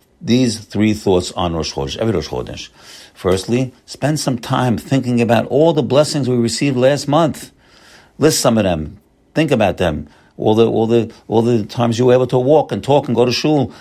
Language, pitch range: English, 95-125 Hz